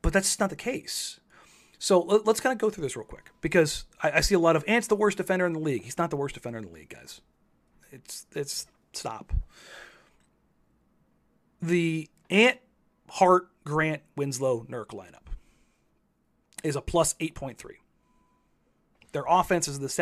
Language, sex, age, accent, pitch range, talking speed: English, male, 30-49, American, 130-180 Hz, 165 wpm